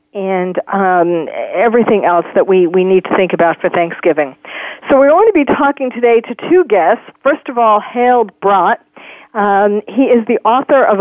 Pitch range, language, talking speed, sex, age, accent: 195-245 Hz, English, 185 wpm, female, 50-69, American